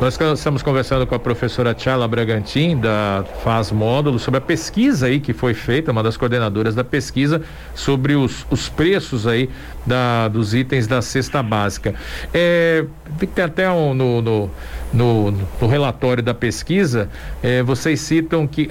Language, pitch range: Portuguese, 120-160 Hz